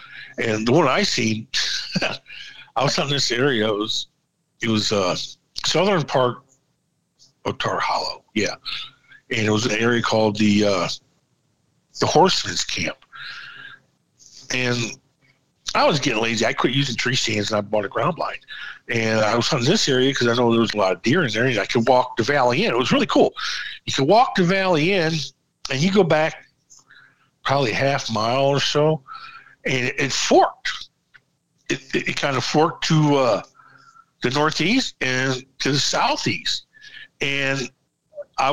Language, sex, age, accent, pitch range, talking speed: English, male, 50-69, American, 120-160 Hz, 175 wpm